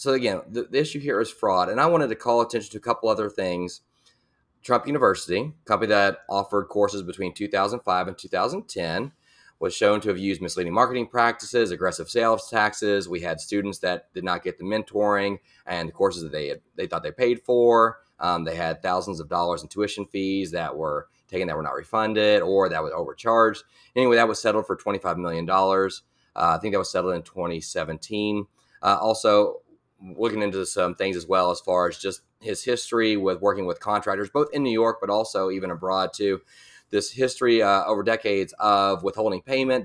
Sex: male